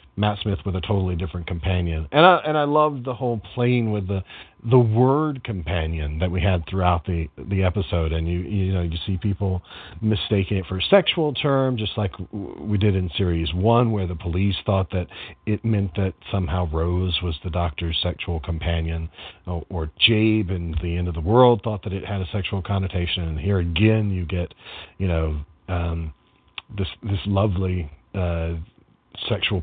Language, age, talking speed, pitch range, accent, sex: English, 40-59, 185 wpm, 90-110 Hz, American, male